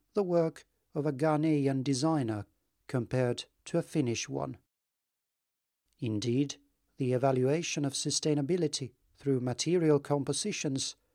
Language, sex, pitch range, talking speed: Finnish, male, 130-160 Hz, 100 wpm